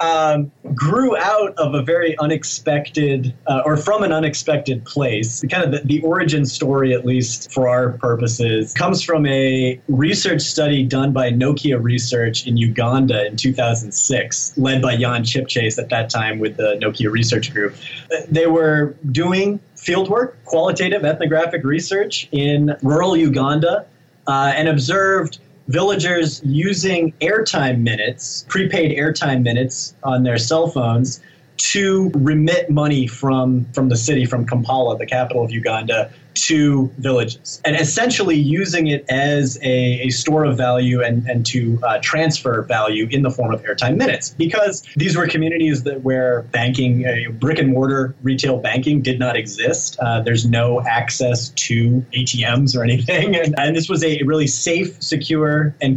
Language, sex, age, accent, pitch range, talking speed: English, male, 30-49, American, 125-155 Hz, 155 wpm